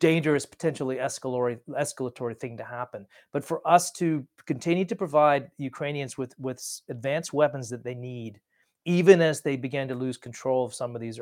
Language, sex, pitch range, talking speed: English, male, 130-165 Hz, 175 wpm